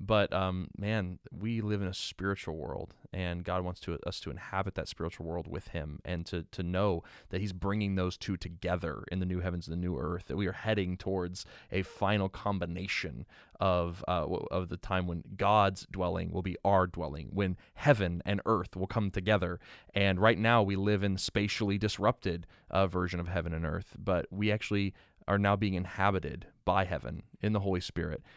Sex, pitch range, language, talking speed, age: male, 90-105 Hz, English, 195 wpm, 20-39